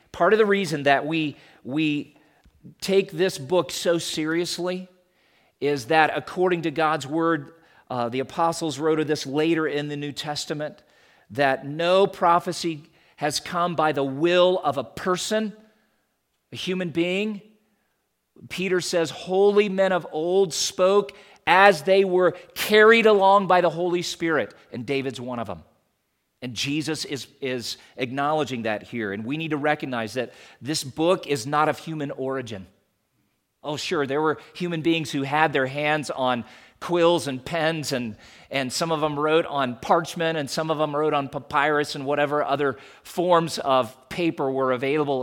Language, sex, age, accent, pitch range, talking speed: English, male, 40-59, American, 135-175 Hz, 160 wpm